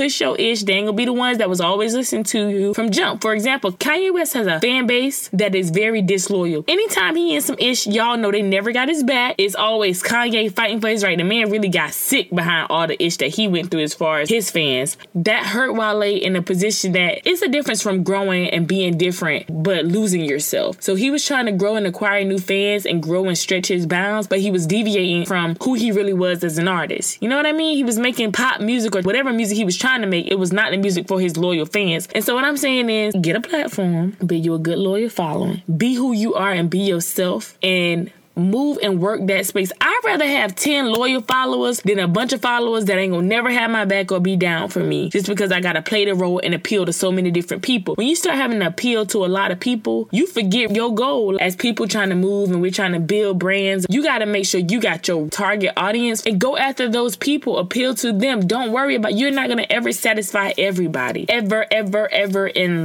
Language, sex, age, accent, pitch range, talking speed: English, female, 20-39, American, 185-235 Hz, 250 wpm